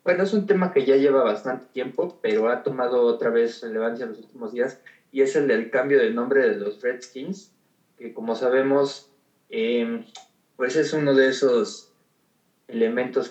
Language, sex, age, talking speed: Spanish, male, 20-39, 175 wpm